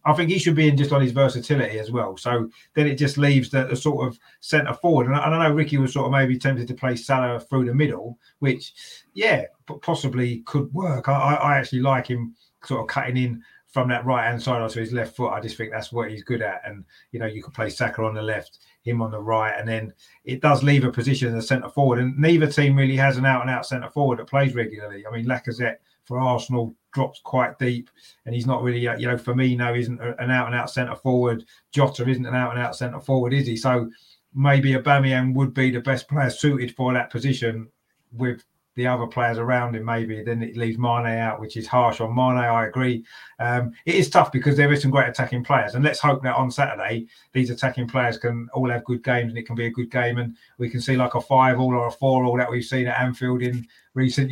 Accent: British